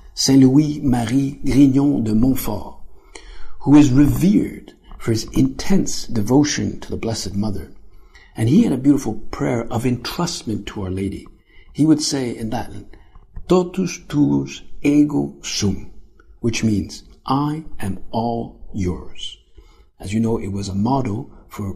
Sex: male